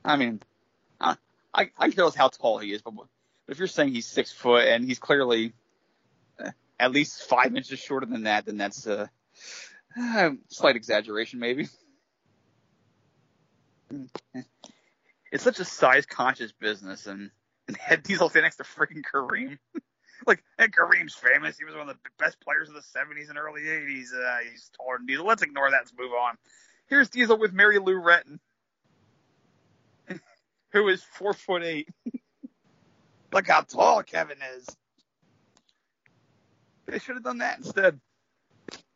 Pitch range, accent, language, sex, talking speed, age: 120-205 Hz, American, English, male, 150 wpm, 30-49